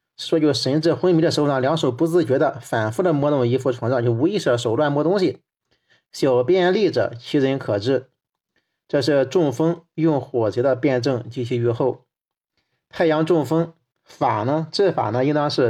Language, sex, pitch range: Chinese, male, 125-160 Hz